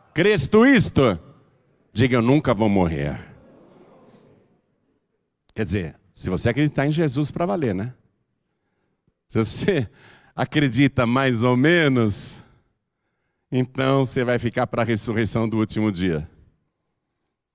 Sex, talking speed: male, 115 wpm